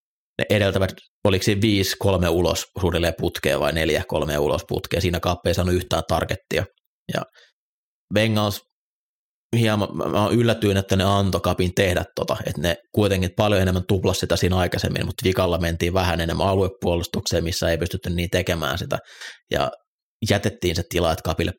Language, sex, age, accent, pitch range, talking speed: Finnish, male, 30-49, native, 85-95 Hz, 155 wpm